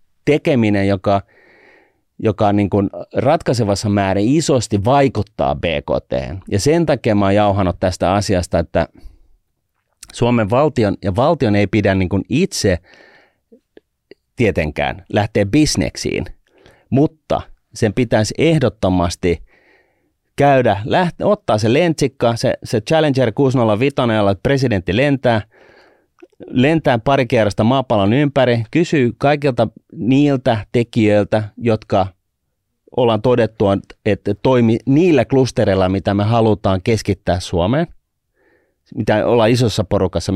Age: 30-49